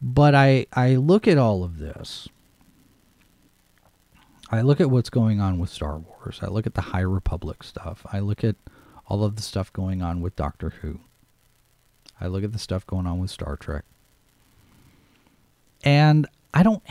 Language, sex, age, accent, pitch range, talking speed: English, male, 40-59, American, 105-175 Hz, 175 wpm